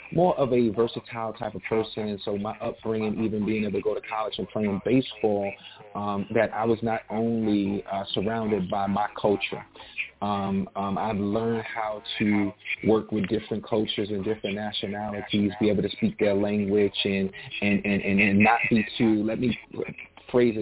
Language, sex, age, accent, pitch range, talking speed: English, male, 30-49, American, 105-130 Hz, 180 wpm